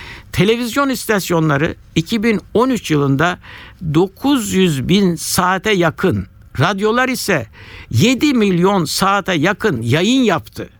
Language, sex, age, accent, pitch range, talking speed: Turkish, male, 60-79, native, 135-205 Hz, 90 wpm